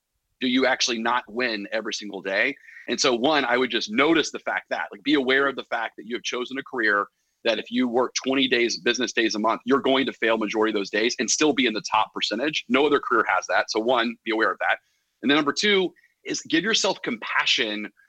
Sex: male